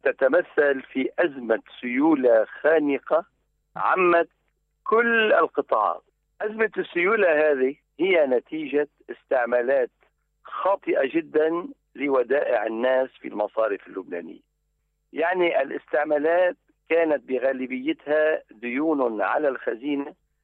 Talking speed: 80 wpm